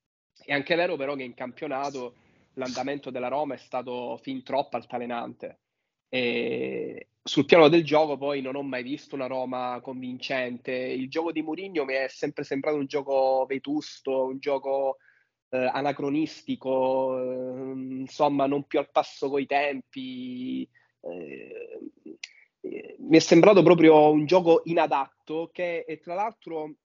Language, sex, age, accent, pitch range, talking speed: Italian, male, 20-39, native, 130-155 Hz, 145 wpm